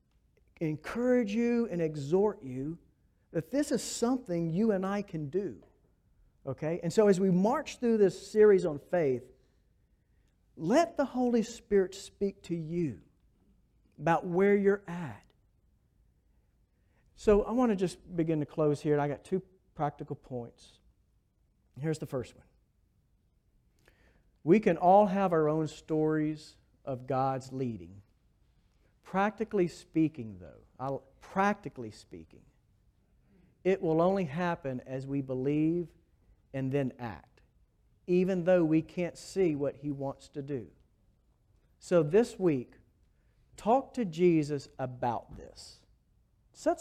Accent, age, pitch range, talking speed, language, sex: American, 50-69, 135-195 Hz, 125 wpm, English, male